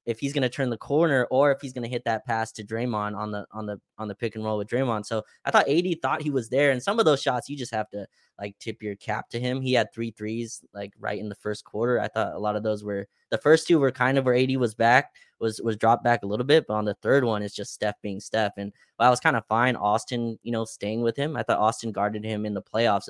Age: 20-39